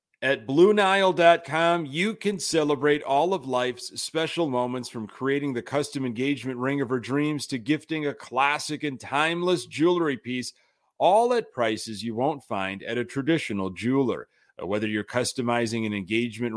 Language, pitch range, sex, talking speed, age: English, 120-155 Hz, male, 150 wpm, 30-49